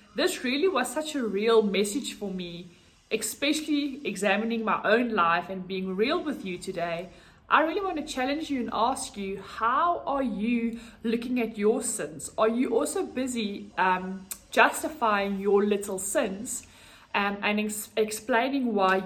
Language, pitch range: English, 195-235 Hz